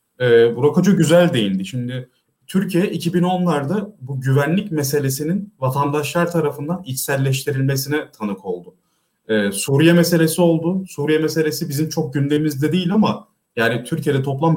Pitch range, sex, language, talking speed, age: 120-170 Hz, male, Turkish, 120 wpm, 30-49